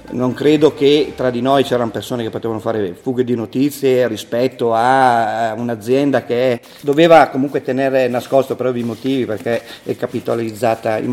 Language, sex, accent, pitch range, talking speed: Italian, male, native, 115-130 Hz, 155 wpm